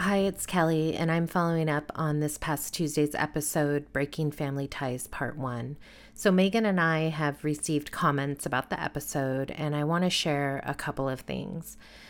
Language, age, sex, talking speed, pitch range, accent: English, 30-49, female, 180 wpm, 145-170 Hz, American